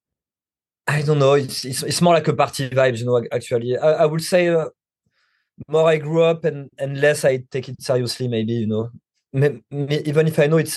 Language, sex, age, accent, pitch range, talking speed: English, male, 20-39, French, 120-140 Hz, 210 wpm